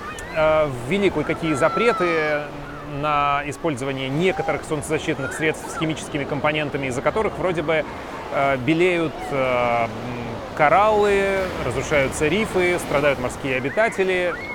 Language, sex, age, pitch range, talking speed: Russian, male, 30-49, 140-180 Hz, 90 wpm